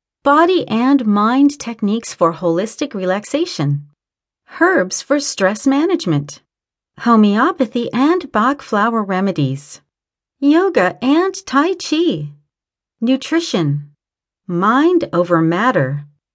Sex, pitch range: female, 170-275 Hz